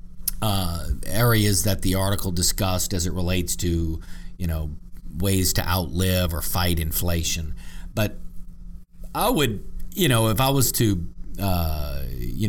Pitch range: 85-110 Hz